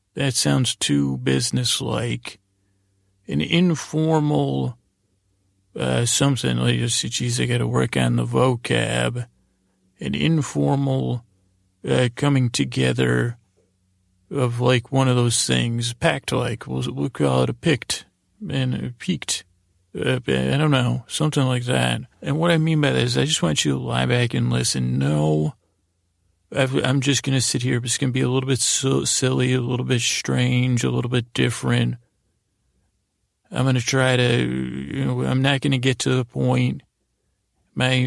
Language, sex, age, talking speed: English, male, 40-59, 170 wpm